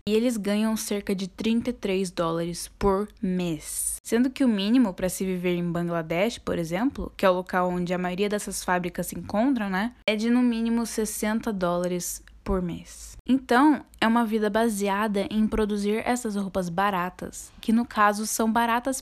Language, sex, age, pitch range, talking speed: Portuguese, female, 10-29, 190-240 Hz, 175 wpm